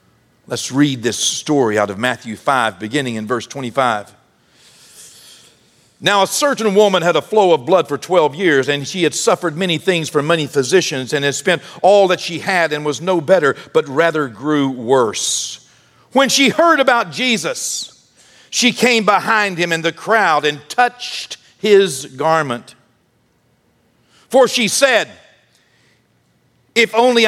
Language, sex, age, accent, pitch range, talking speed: English, male, 50-69, American, 160-220 Hz, 150 wpm